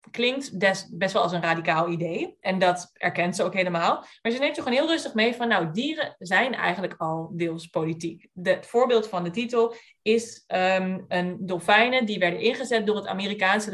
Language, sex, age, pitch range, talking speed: Dutch, female, 20-39, 180-225 Hz, 195 wpm